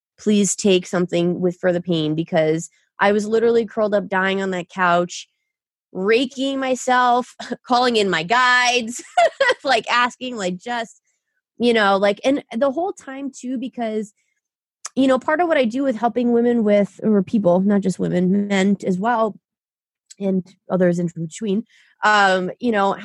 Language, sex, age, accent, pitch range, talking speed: English, female, 20-39, American, 200-265 Hz, 160 wpm